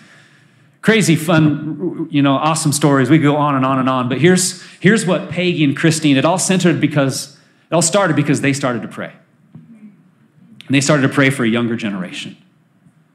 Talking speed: 190 wpm